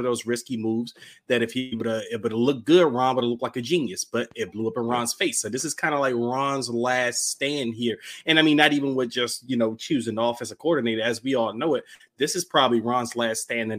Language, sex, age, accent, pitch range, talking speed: English, male, 30-49, American, 120-155 Hz, 255 wpm